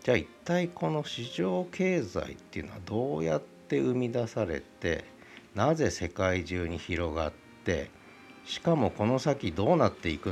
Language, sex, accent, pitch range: Japanese, male, native, 95-125 Hz